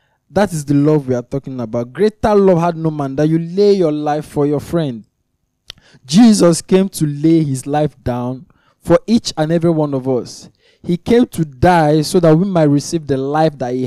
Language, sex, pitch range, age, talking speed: English, male, 130-170 Hz, 20-39, 210 wpm